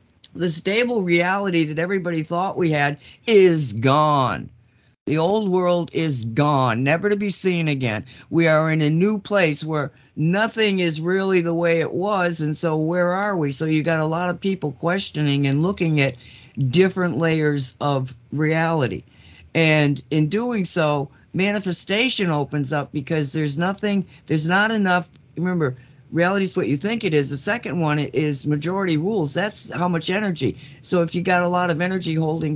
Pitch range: 145-180 Hz